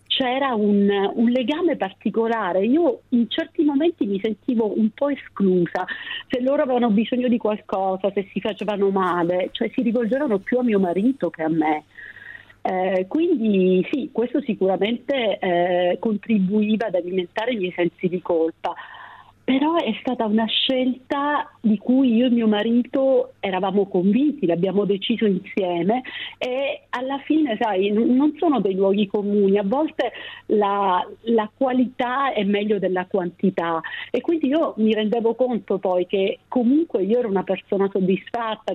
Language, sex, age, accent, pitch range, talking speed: Italian, female, 50-69, native, 195-255 Hz, 150 wpm